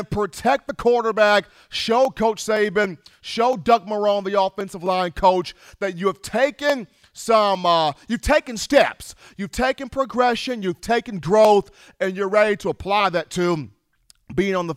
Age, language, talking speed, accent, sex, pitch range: 40-59, English, 155 wpm, American, male, 175-220 Hz